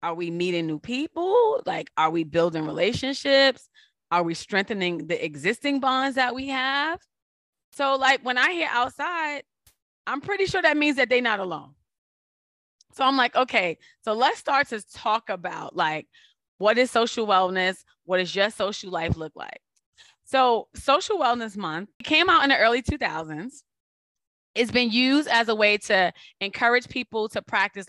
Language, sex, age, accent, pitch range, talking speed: English, female, 20-39, American, 185-255 Hz, 165 wpm